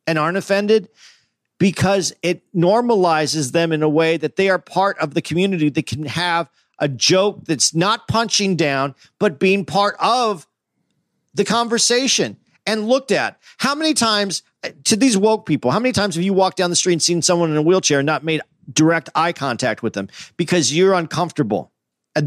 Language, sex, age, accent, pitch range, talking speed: English, male, 40-59, American, 160-210 Hz, 185 wpm